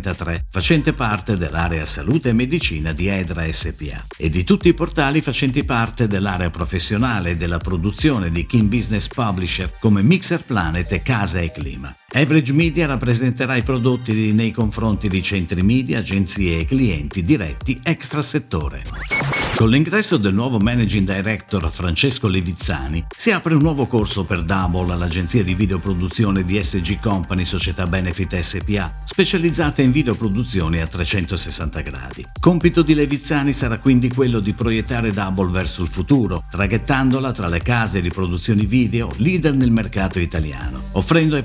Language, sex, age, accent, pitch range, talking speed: Italian, male, 50-69, native, 90-130 Hz, 150 wpm